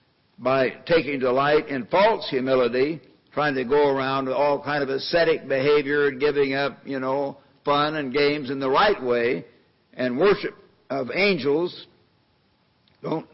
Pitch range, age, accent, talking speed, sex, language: 135-160 Hz, 60-79, American, 145 wpm, male, English